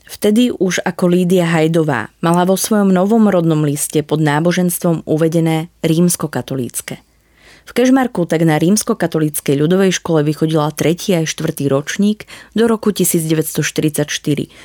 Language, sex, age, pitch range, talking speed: Slovak, female, 20-39, 150-195 Hz, 125 wpm